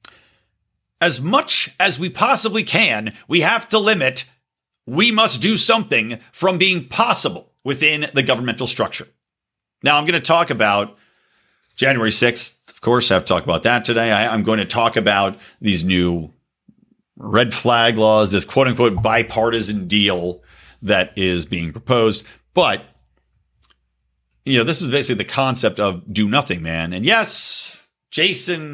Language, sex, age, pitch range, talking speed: English, male, 50-69, 100-135 Hz, 150 wpm